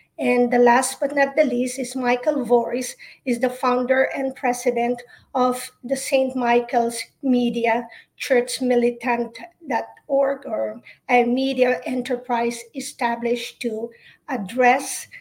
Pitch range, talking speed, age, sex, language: 245-285 Hz, 110 wpm, 50-69, female, English